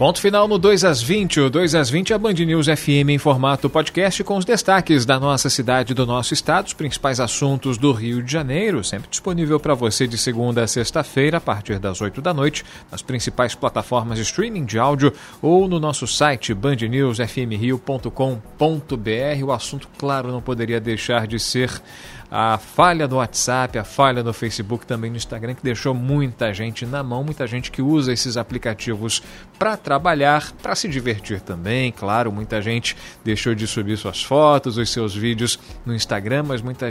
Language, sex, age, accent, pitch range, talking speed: Portuguese, male, 40-59, Brazilian, 120-150 Hz, 185 wpm